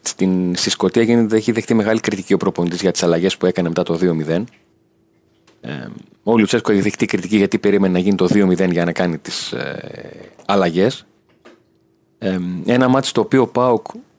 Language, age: Greek, 30-49